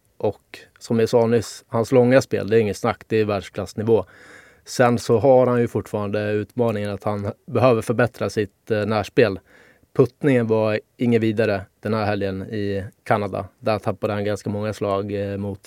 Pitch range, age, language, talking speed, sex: 100-115 Hz, 20-39, English, 170 wpm, male